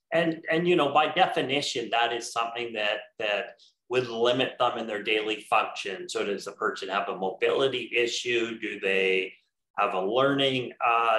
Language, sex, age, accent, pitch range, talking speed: English, male, 30-49, American, 115-175 Hz, 170 wpm